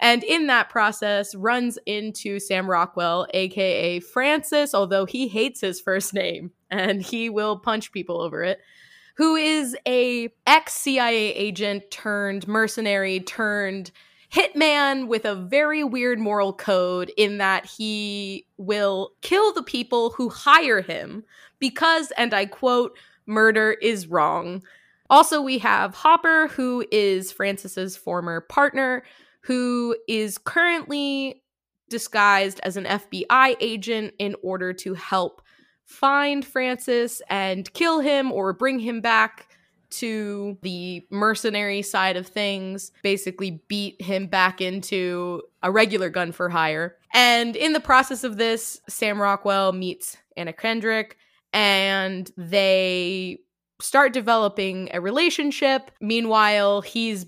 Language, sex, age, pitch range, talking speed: English, female, 20-39, 190-245 Hz, 125 wpm